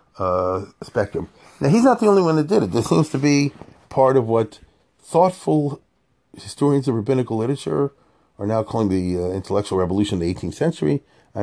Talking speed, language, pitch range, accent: 185 wpm, English, 100-130 Hz, American